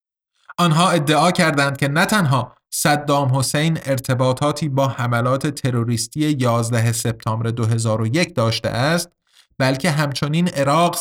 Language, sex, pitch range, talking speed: Persian, male, 125-155 Hz, 110 wpm